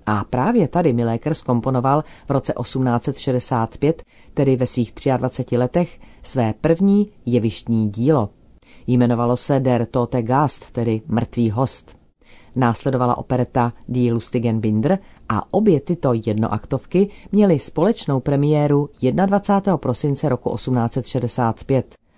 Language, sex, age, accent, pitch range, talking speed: Czech, female, 40-59, native, 120-150 Hz, 110 wpm